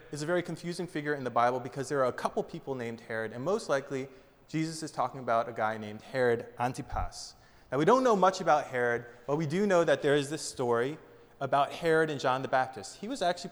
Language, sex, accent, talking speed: English, male, American, 235 wpm